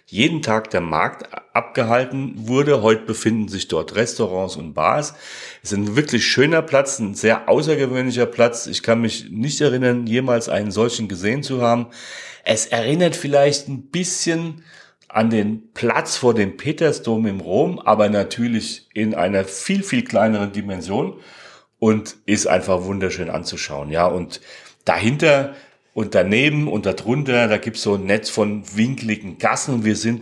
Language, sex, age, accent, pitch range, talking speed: German, male, 40-59, German, 105-130 Hz, 155 wpm